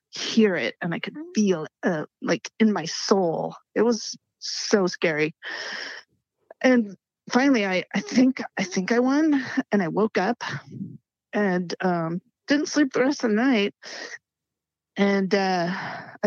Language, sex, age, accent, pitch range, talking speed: English, female, 30-49, American, 180-230 Hz, 145 wpm